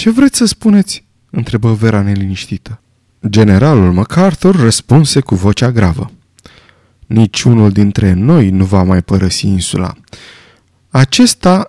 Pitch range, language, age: 105-145 Hz, Romanian, 20-39